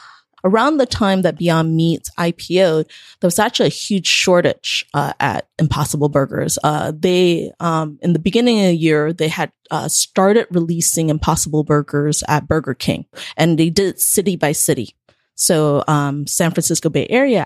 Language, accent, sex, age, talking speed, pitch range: English, American, female, 20-39, 170 wpm, 150-185 Hz